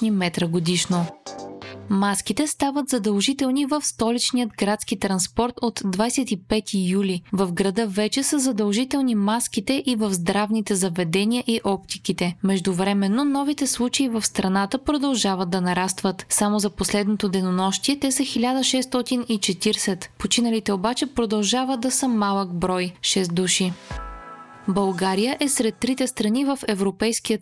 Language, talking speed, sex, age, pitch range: Bulgarian, 125 wpm, female, 20-39, 190-245 Hz